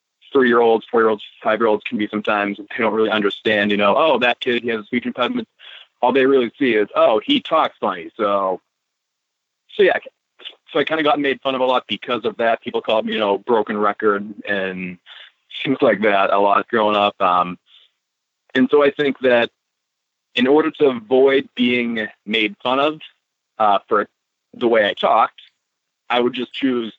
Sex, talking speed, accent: male, 185 wpm, American